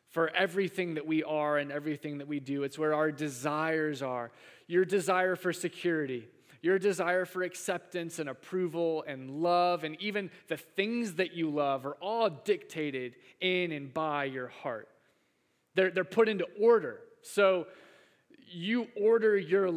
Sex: male